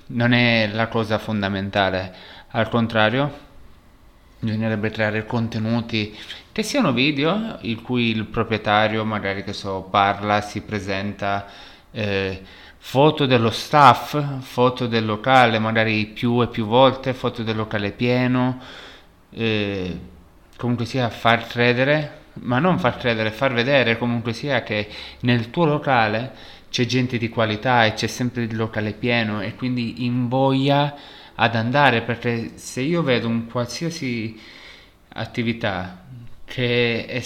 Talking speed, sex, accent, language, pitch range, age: 130 wpm, male, native, Italian, 105-125 Hz, 30-49